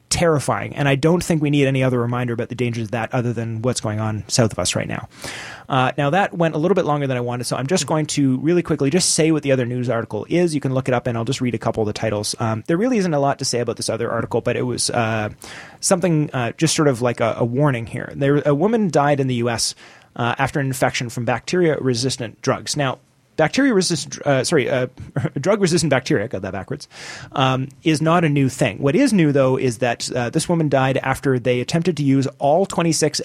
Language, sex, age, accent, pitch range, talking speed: English, male, 30-49, American, 120-155 Hz, 255 wpm